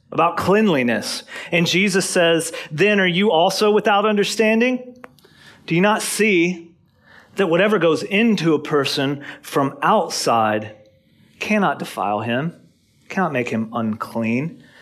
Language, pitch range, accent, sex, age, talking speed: English, 140-185 Hz, American, male, 40-59, 120 wpm